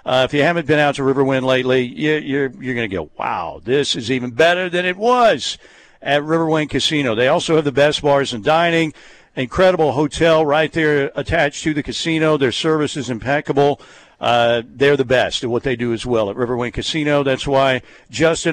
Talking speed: 200 wpm